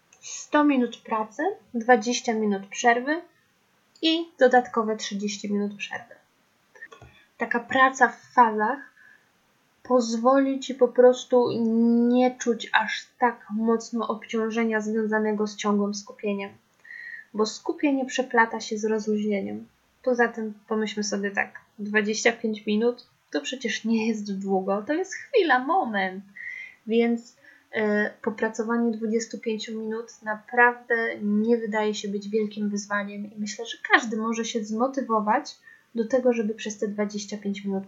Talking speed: 120 wpm